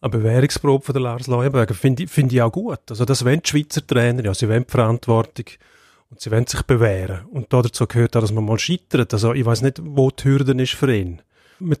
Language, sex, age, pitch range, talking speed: German, male, 40-59, 115-135 Hz, 235 wpm